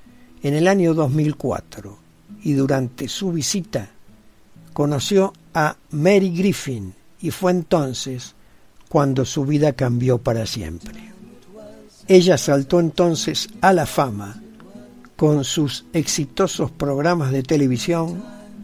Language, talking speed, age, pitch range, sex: Spanish, 105 wpm, 60-79, 135-175 Hz, male